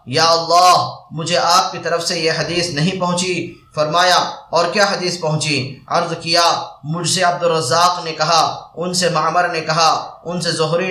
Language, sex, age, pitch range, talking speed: Arabic, male, 20-39, 160-175 Hz, 170 wpm